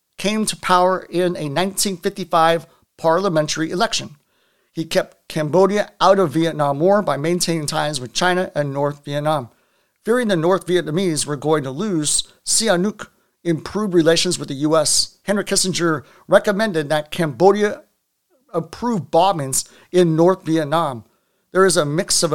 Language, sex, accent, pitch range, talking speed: English, male, American, 155-185 Hz, 140 wpm